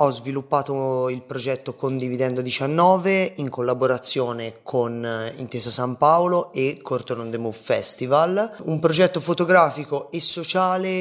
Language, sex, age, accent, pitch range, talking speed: Italian, male, 30-49, native, 135-175 Hz, 120 wpm